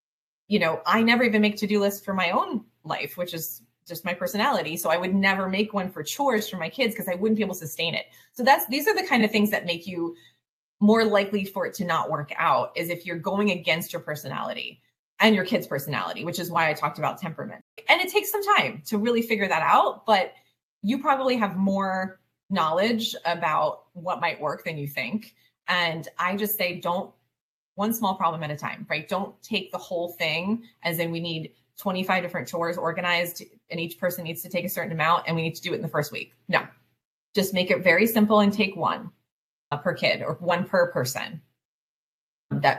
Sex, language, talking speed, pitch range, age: female, English, 220 wpm, 165-215 Hz, 30-49